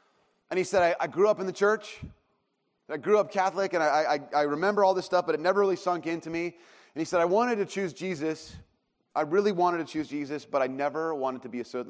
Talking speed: 245 wpm